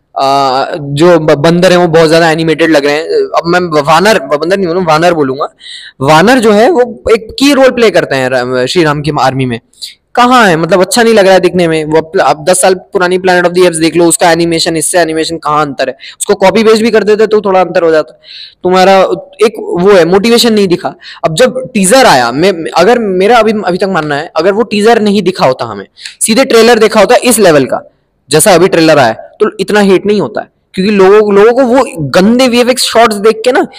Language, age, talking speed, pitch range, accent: Hindi, 20-39, 165 wpm, 160-215 Hz, native